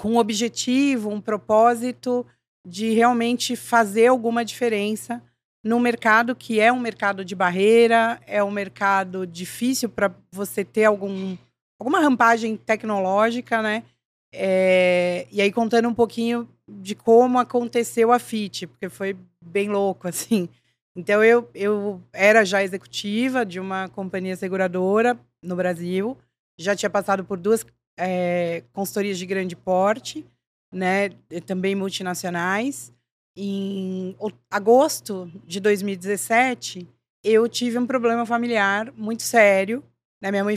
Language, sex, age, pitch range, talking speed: Portuguese, female, 20-39, 190-235 Hz, 125 wpm